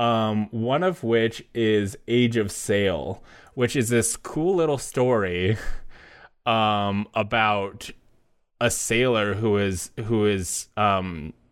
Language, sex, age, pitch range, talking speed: English, male, 20-39, 90-115 Hz, 120 wpm